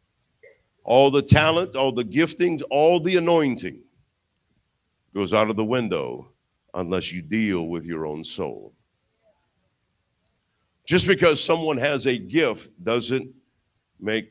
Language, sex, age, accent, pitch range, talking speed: English, male, 50-69, American, 95-140 Hz, 120 wpm